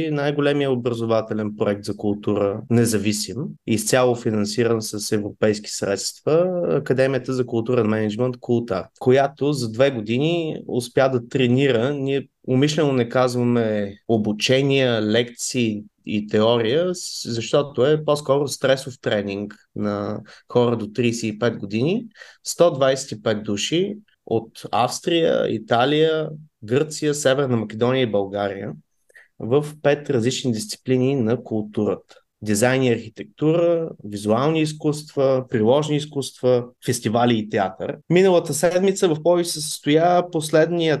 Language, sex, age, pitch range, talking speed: Bulgarian, male, 20-39, 115-150 Hz, 110 wpm